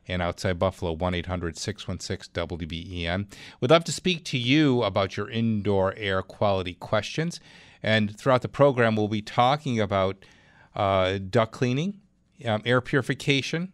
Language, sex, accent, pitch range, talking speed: English, male, American, 100-130 Hz, 130 wpm